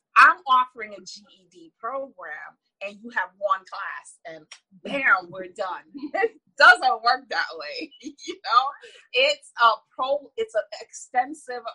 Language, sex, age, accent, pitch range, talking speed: English, female, 30-49, American, 205-295 Hz, 140 wpm